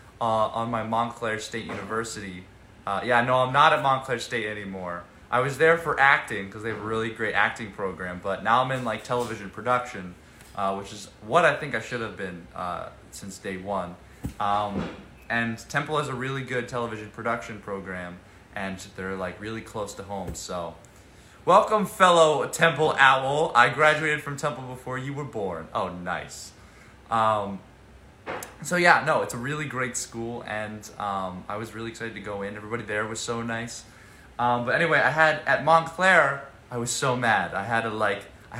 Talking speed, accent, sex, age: 185 wpm, American, male, 20-39